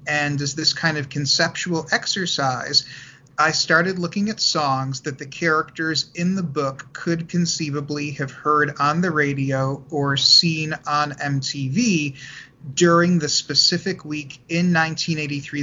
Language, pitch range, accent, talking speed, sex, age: English, 140-160 Hz, American, 135 wpm, male, 30-49